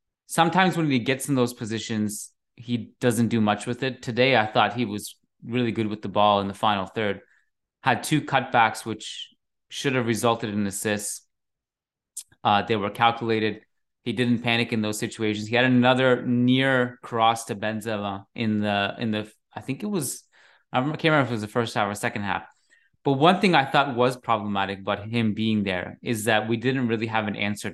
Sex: male